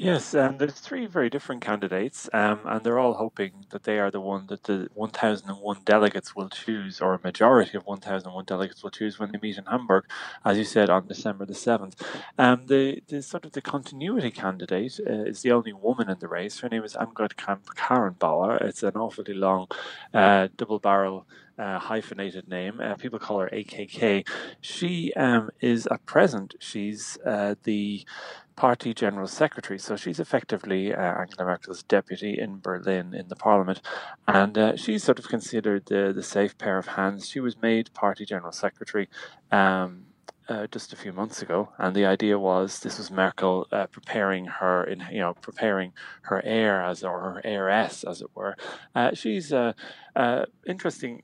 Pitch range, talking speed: 95-115 Hz, 185 wpm